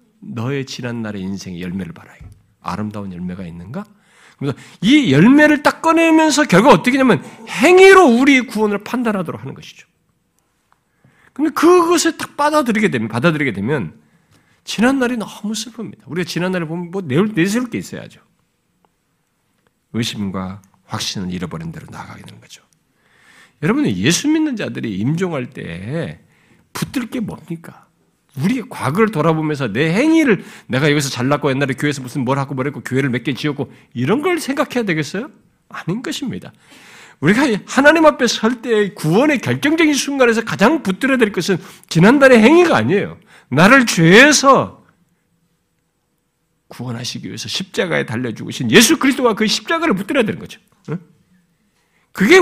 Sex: male